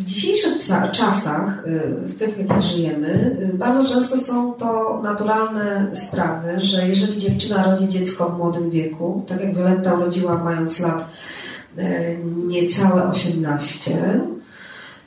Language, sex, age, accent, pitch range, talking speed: Polish, female, 30-49, native, 175-225 Hz, 120 wpm